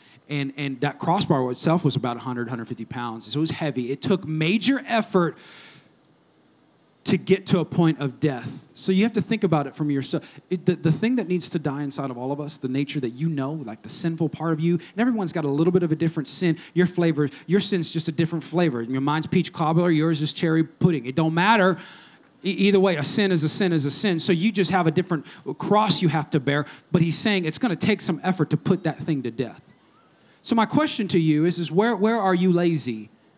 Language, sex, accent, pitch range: English, male, American, 155-220 Hz